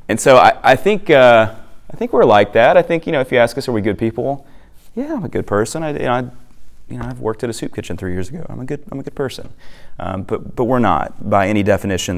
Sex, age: male, 30-49